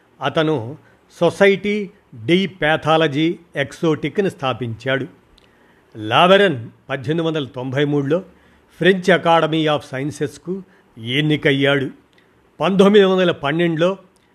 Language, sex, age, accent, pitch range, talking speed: Telugu, male, 50-69, native, 135-170 Hz, 80 wpm